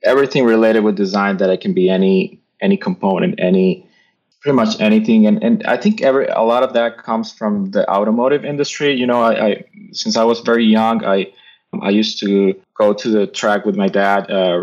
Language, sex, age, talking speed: English, male, 20-39, 195 wpm